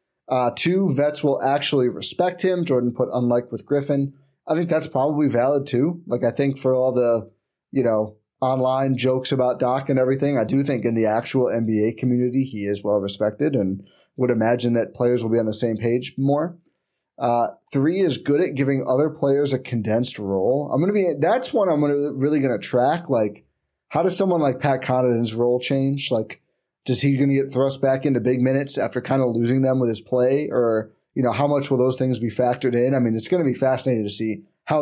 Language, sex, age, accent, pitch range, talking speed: English, male, 20-39, American, 120-140 Hz, 215 wpm